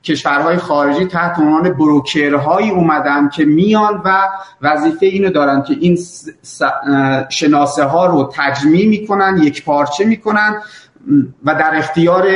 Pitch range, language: 145-190 Hz, Persian